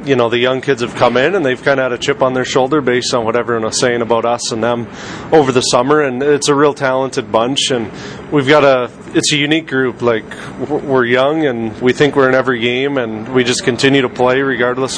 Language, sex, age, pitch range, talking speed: English, male, 30-49, 120-135 Hz, 250 wpm